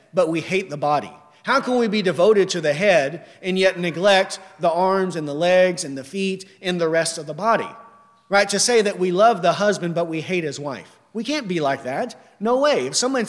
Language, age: English, 40-59